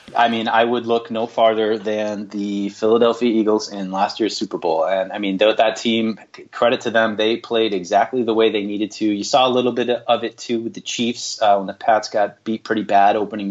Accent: American